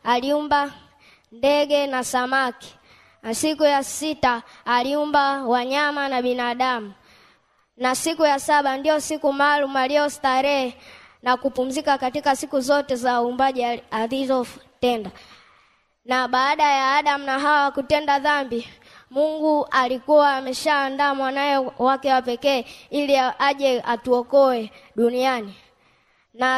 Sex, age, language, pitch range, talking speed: female, 20-39, Swahili, 250-290 Hz, 115 wpm